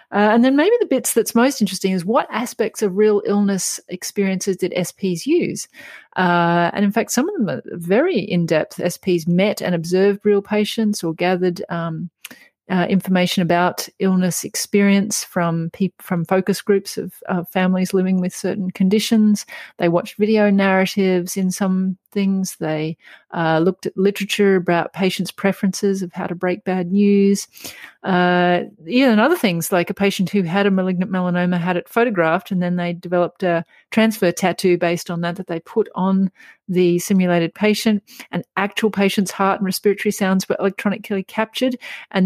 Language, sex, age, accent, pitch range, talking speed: English, female, 30-49, Australian, 180-210 Hz, 170 wpm